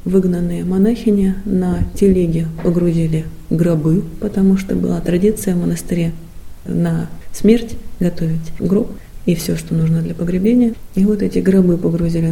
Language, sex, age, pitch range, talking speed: Russian, female, 30-49, 165-210 Hz, 130 wpm